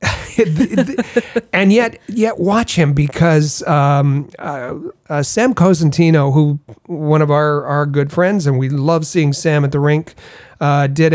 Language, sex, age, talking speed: English, male, 40-59, 150 wpm